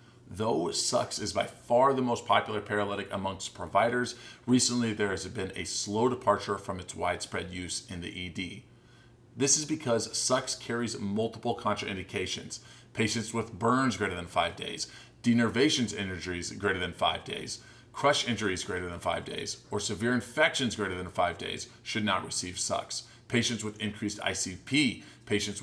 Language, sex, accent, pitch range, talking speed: English, male, American, 100-120 Hz, 155 wpm